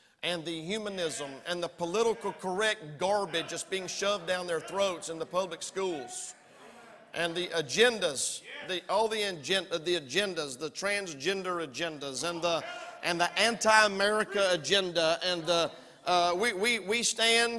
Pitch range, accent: 175-225 Hz, American